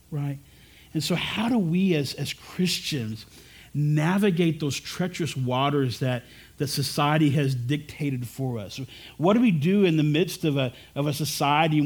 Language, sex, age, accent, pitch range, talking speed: English, male, 40-59, American, 140-180 Hz, 165 wpm